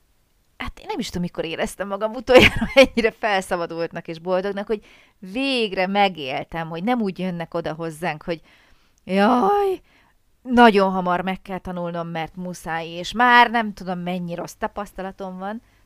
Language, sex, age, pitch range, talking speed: Hungarian, female, 30-49, 170-230 Hz, 150 wpm